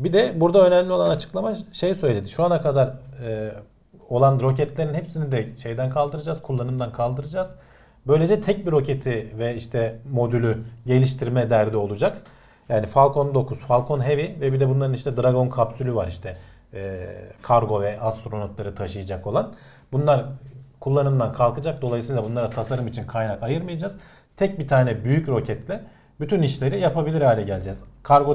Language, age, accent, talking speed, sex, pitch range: Turkish, 40-59, native, 150 wpm, male, 110-140 Hz